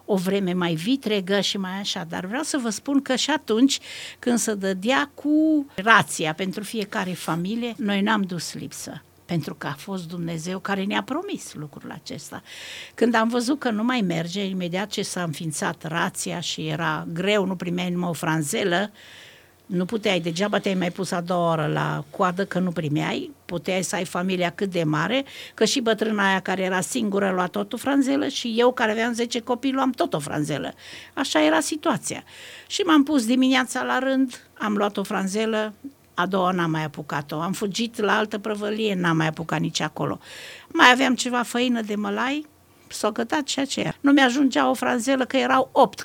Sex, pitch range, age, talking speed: female, 180-255 Hz, 50-69, 190 wpm